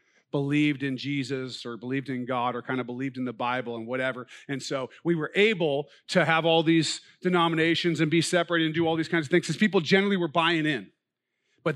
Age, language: 40-59, English